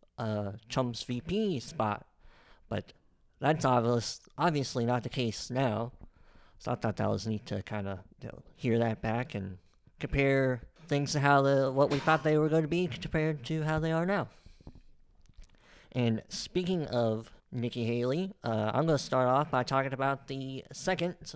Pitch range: 110-145 Hz